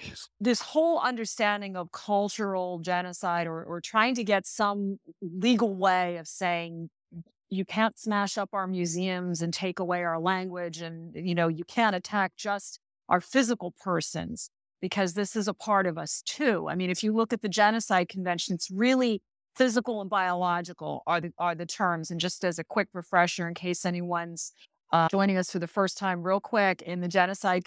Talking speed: 185 wpm